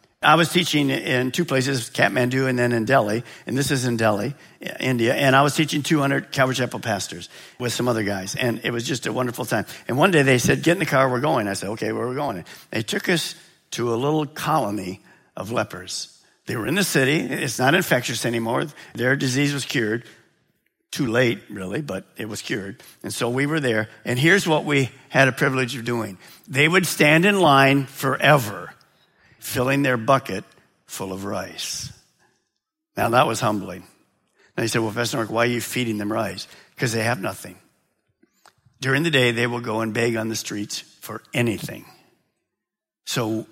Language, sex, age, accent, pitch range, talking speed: English, male, 50-69, American, 110-145 Hz, 195 wpm